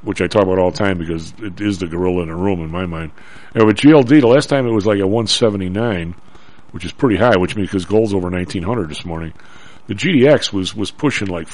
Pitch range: 95-115 Hz